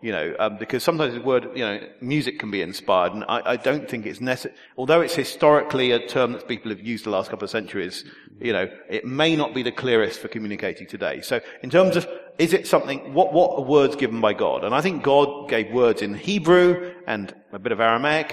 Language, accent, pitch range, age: English, British, 110-145 Hz, 40-59